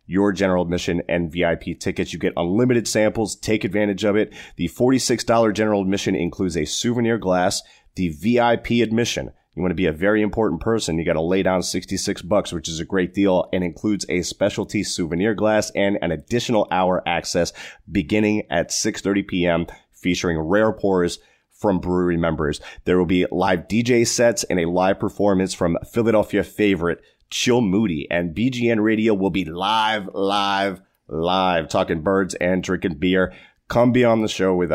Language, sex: English, male